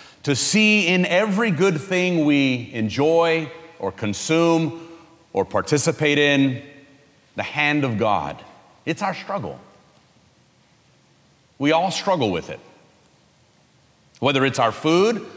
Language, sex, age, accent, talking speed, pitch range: English, male, 40-59, American, 115 wpm, 135-175 Hz